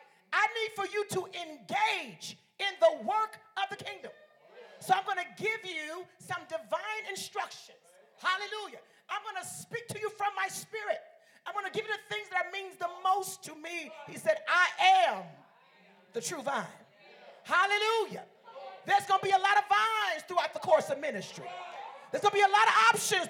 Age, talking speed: 40-59, 190 wpm